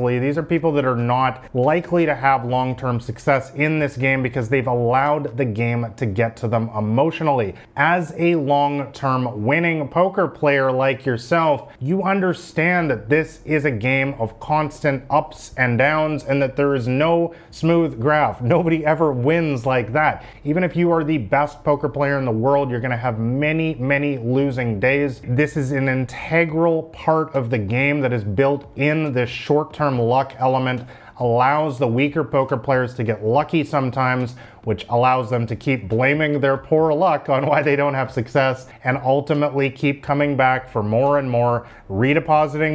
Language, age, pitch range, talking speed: English, 30-49, 130-155 Hz, 175 wpm